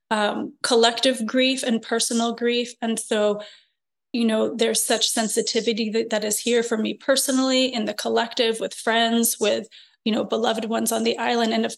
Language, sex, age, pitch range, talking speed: English, female, 30-49, 220-245 Hz, 180 wpm